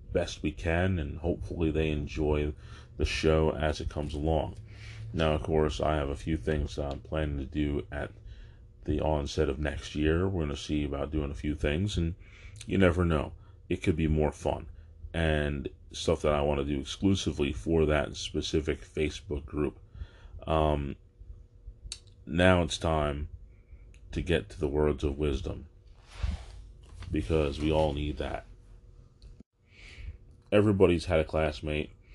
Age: 30-49